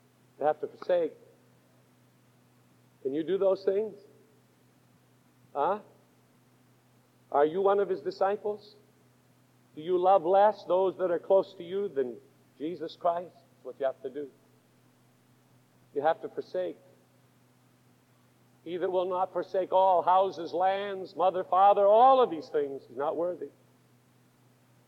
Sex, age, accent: male, 50-69, American